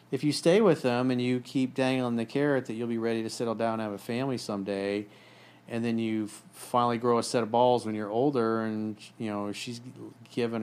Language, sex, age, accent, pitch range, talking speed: English, male, 40-59, American, 105-130 Hz, 225 wpm